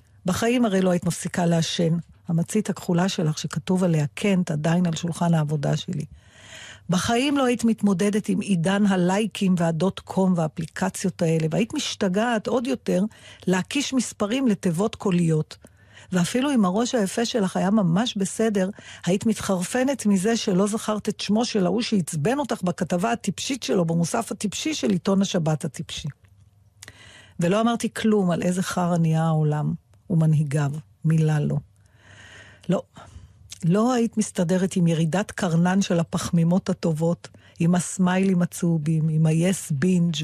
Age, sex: 50-69, female